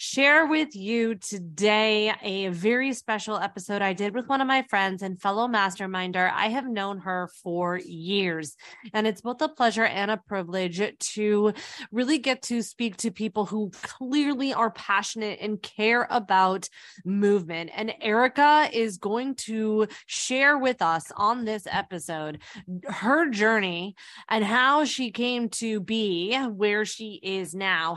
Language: English